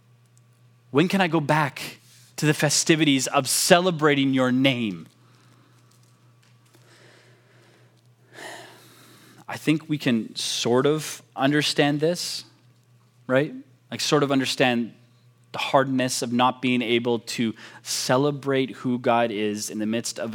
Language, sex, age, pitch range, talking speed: English, male, 20-39, 120-145 Hz, 120 wpm